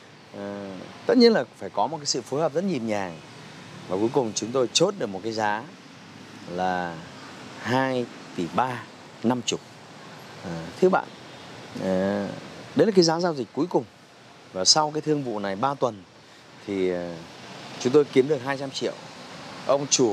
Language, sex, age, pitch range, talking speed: Vietnamese, male, 30-49, 105-155 Hz, 170 wpm